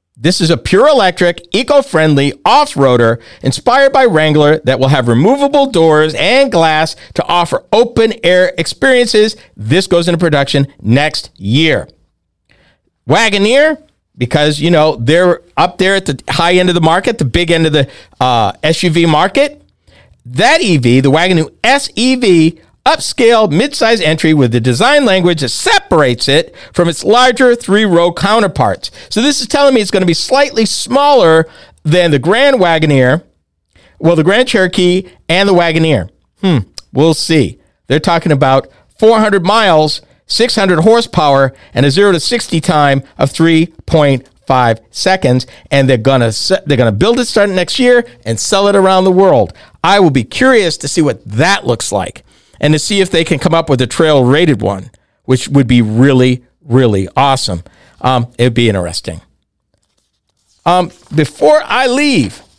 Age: 50-69